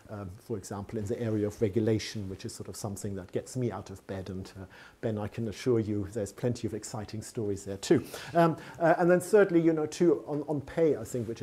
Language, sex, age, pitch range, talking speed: English, male, 50-69, 105-125 Hz, 245 wpm